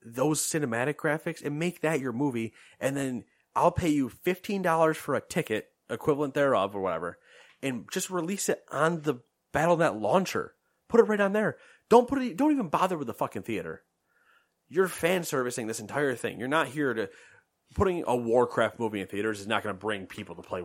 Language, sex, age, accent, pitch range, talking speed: English, male, 30-49, American, 105-150 Hz, 205 wpm